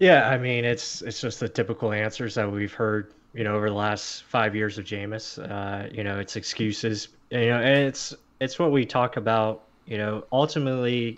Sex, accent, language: male, American, English